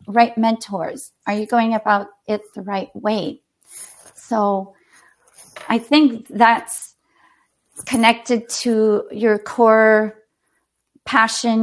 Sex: female